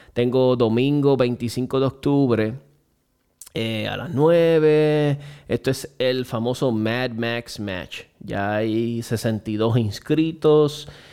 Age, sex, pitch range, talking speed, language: 20-39, male, 115-145 Hz, 110 wpm, Spanish